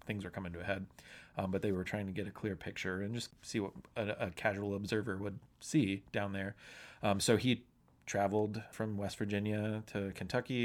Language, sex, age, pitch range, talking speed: English, male, 30-49, 95-115 Hz, 210 wpm